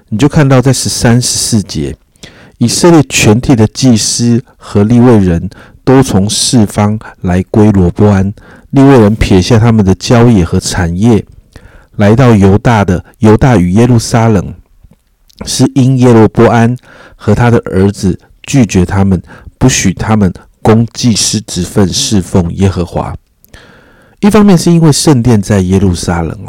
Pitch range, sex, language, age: 95-120 Hz, male, Chinese, 50-69